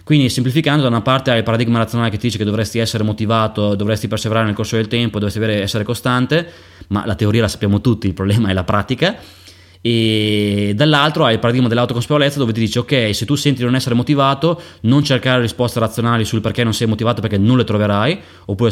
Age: 20-39